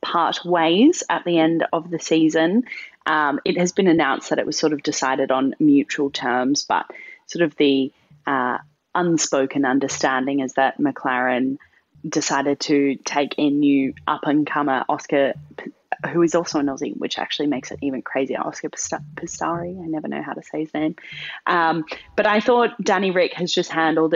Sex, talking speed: female, 170 wpm